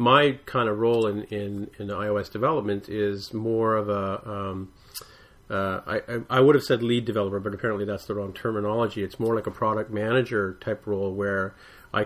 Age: 40-59